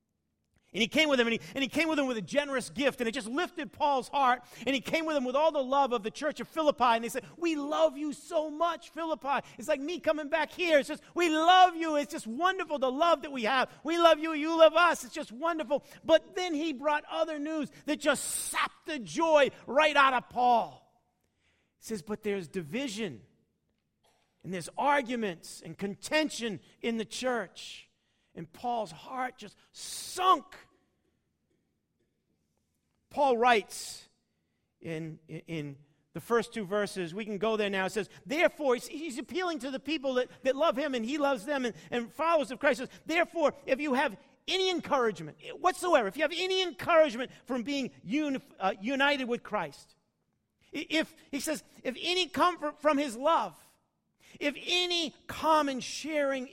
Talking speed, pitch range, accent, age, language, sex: 185 wpm, 235-315 Hz, American, 50-69, English, male